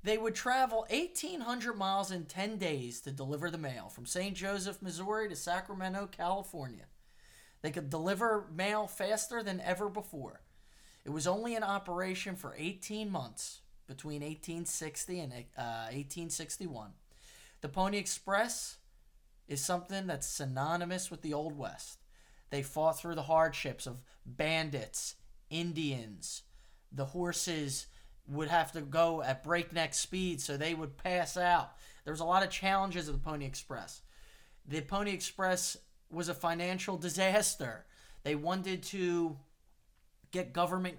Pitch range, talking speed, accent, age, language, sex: 140-185 Hz, 140 wpm, American, 20-39, English, male